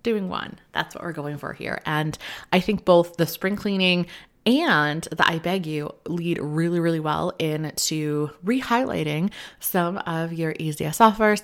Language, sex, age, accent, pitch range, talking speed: English, female, 20-39, American, 155-210 Hz, 170 wpm